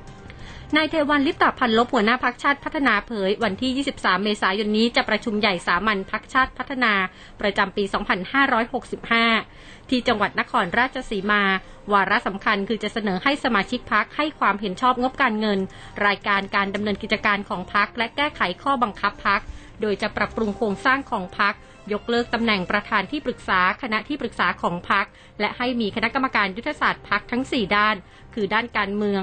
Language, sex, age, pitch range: Thai, female, 30-49, 205-245 Hz